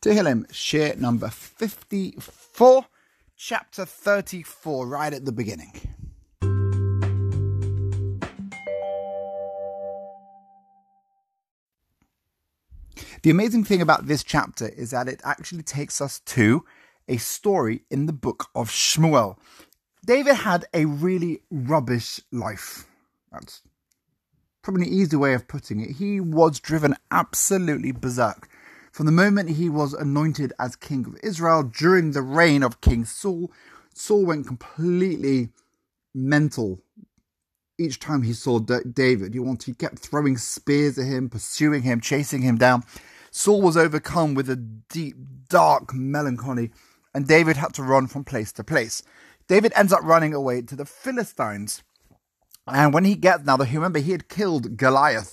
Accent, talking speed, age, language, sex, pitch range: British, 130 wpm, 30-49, English, male, 120-175 Hz